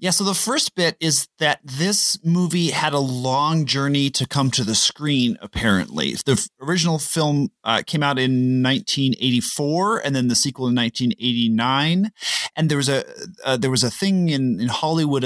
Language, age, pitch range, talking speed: English, 30-49, 120-150 Hz, 180 wpm